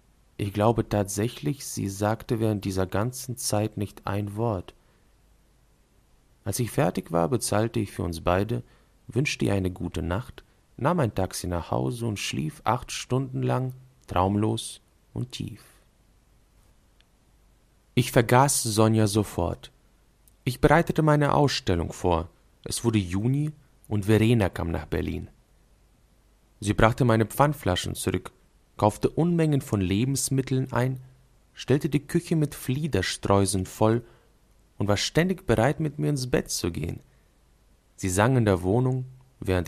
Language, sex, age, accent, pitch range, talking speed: German, male, 40-59, German, 100-135 Hz, 135 wpm